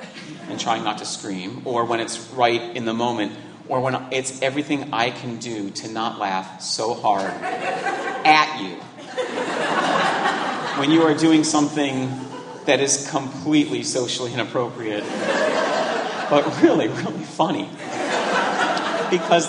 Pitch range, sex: 120-145 Hz, male